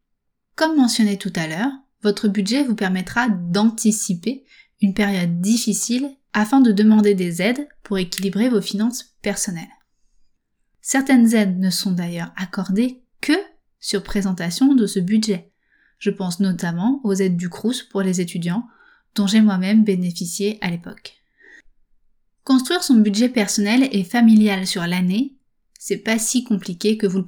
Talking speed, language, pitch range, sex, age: 145 wpm, French, 195-235 Hz, female, 20-39